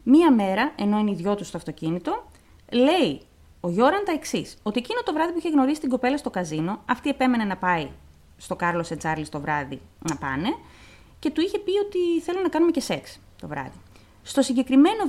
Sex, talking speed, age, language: female, 200 wpm, 30-49, Greek